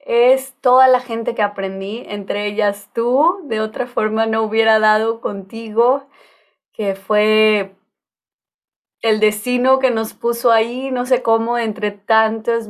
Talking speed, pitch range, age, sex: 135 wpm, 205-235 Hz, 20-39, female